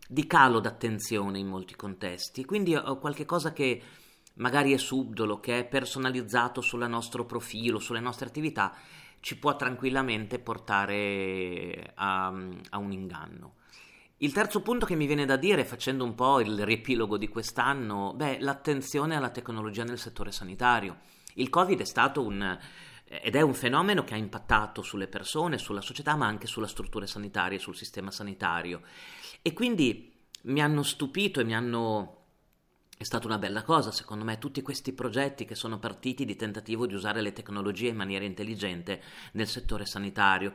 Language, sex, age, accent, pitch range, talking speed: Italian, male, 30-49, native, 105-130 Hz, 160 wpm